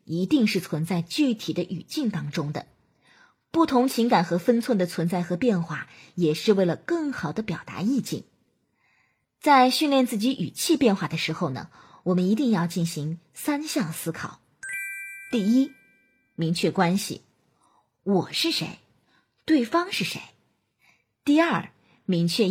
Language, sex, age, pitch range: Chinese, female, 20-39, 175-260 Hz